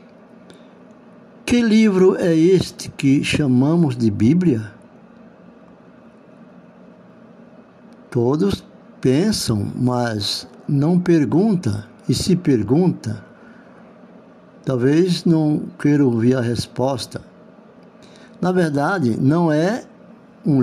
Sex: male